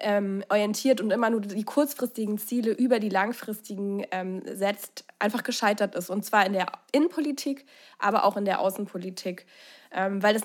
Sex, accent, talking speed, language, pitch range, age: female, German, 165 wpm, German, 195-220 Hz, 20-39